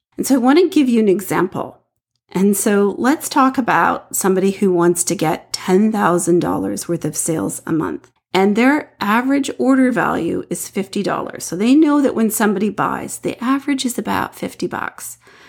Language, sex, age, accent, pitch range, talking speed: English, female, 40-59, American, 180-255 Hz, 175 wpm